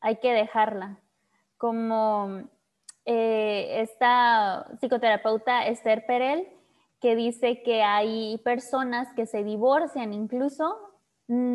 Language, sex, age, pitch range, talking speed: Spanish, female, 20-39, 225-275 Hz, 100 wpm